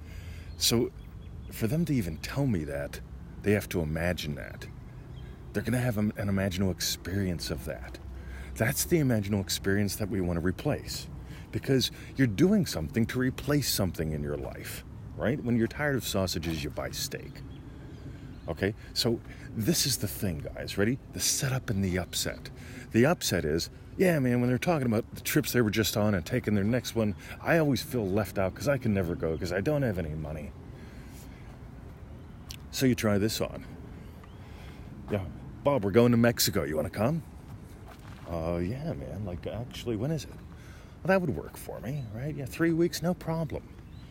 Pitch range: 85-125 Hz